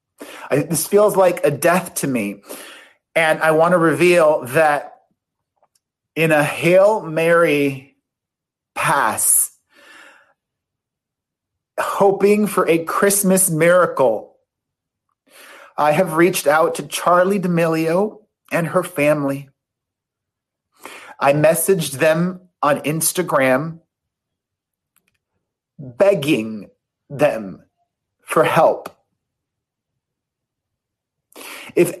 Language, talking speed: English, 80 wpm